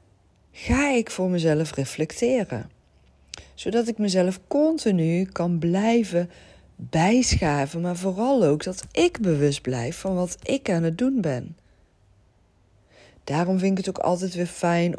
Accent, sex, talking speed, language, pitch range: Dutch, female, 135 wpm, Dutch, 145-185 Hz